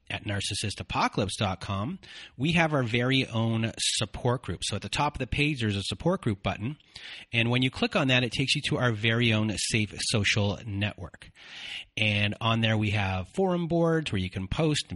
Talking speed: 195 wpm